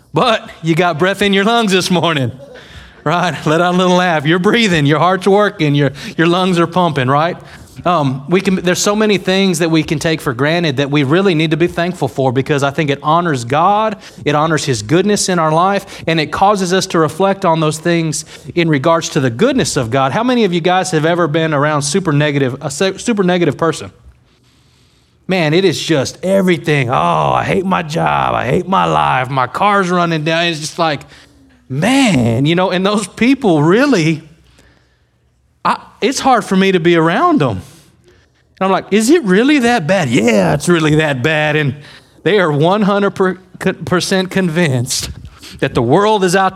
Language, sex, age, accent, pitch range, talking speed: English, male, 30-49, American, 150-190 Hz, 195 wpm